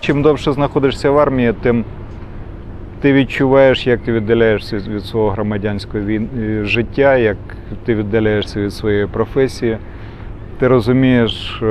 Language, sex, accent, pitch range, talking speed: Ukrainian, male, native, 105-125 Hz, 120 wpm